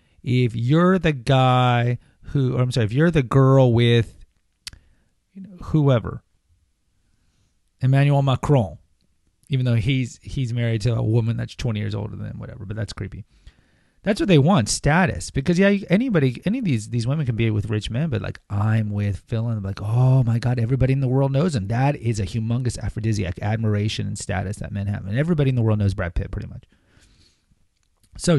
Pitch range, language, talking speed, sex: 105-135 Hz, English, 195 wpm, male